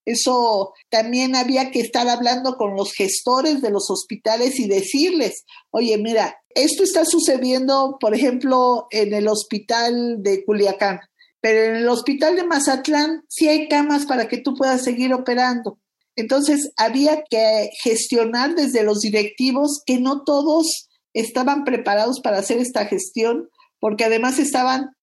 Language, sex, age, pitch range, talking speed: Spanish, female, 50-69, 215-275 Hz, 145 wpm